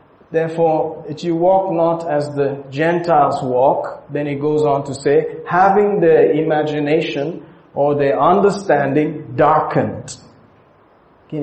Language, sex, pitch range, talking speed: English, male, 145-170 Hz, 120 wpm